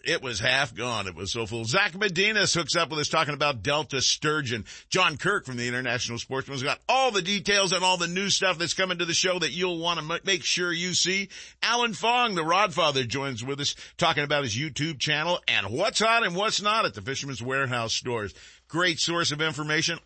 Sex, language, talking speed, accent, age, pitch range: male, English, 220 wpm, American, 50-69, 130-185 Hz